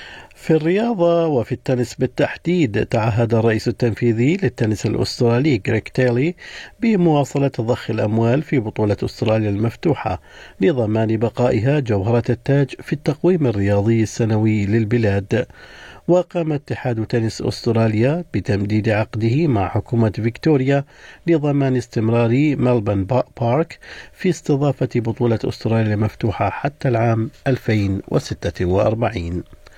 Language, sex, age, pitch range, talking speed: Arabic, male, 50-69, 105-130 Hz, 100 wpm